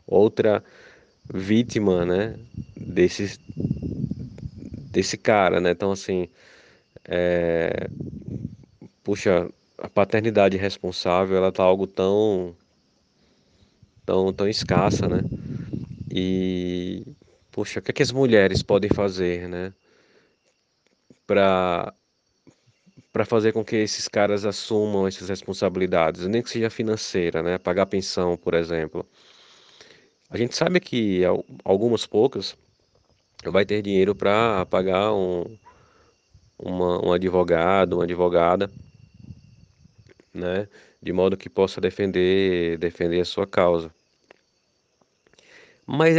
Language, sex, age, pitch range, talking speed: Portuguese, male, 20-39, 90-110 Hz, 105 wpm